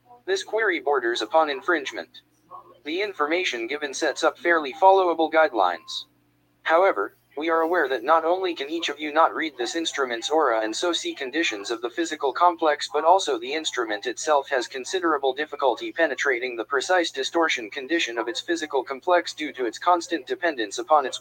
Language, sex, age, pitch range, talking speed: English, male, 20-39, 130-180 Hz, 175 wpm